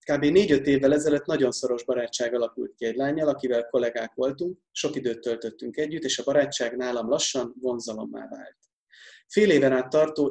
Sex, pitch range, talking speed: male, 125-160 Hz, 170 wpm